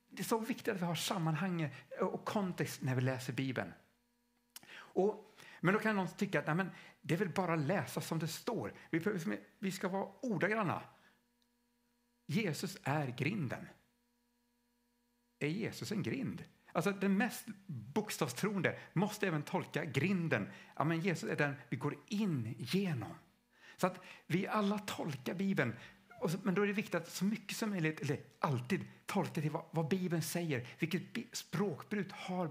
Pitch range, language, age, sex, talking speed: 140-200 Hz, Swedish, 50-69, male, 155 wpm